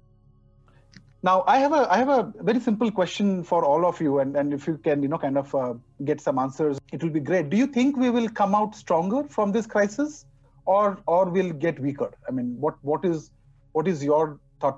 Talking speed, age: 225 wpm, 40-59